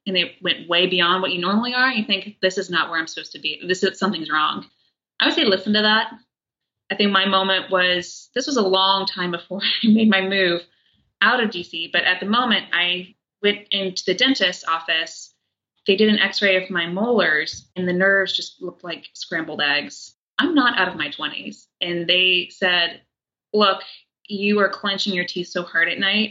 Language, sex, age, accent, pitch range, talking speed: English, female, 20-39, American, 185-220 Hz, 210 wpm